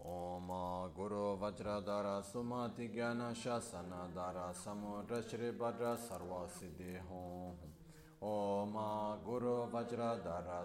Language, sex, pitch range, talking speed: Italian, male, 90-120 Hz, 100 wpm